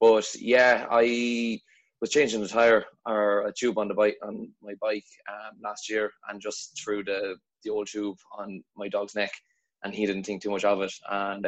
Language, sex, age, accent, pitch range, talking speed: English, male, 20-39, Irish, 100-110 Hz, 205 wpm